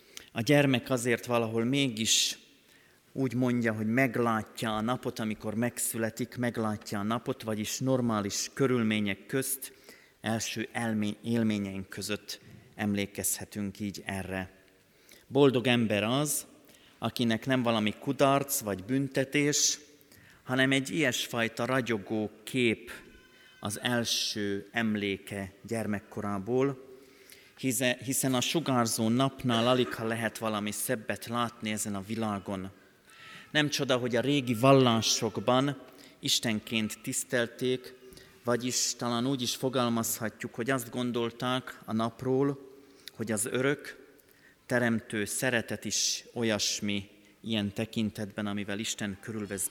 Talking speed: 105 wpm